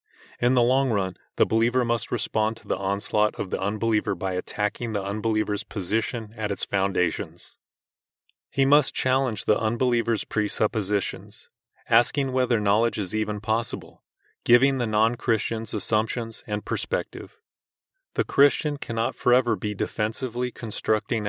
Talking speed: 130 wpm